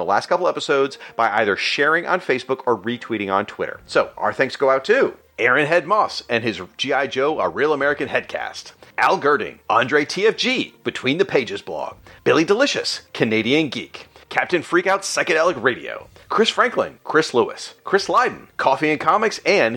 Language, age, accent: English, 40-59, American